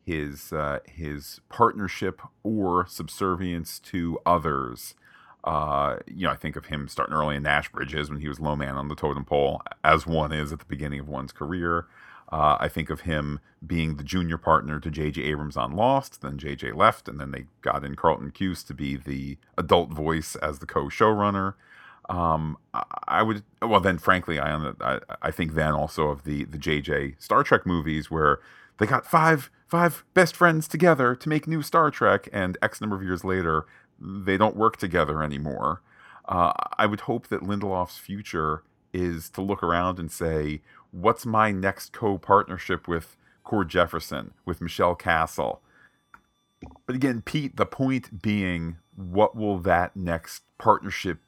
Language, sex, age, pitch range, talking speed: English, male, 40-59, 75-100 Hz, 175 wpm